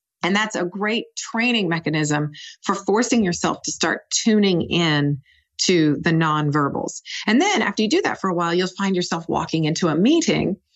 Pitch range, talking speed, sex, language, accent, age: 160-210 Hz, 180 wpm, female, English, American, 40-59